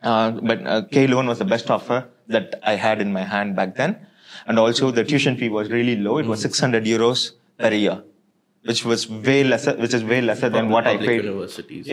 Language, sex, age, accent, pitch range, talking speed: English, male, 20-39, Indian, 110-130 Hz, 215 wpm